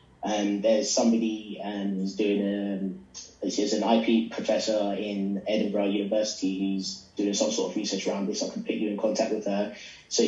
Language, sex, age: English, male, 20-39